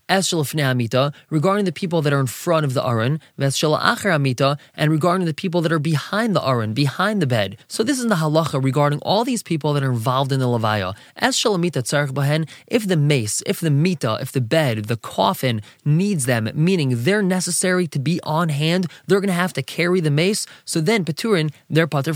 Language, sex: English, male